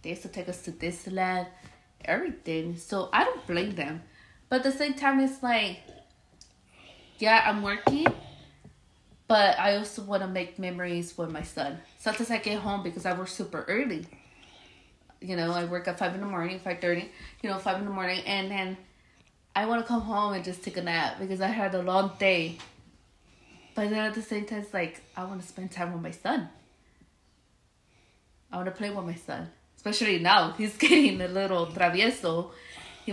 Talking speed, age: 195 wpm, 20-39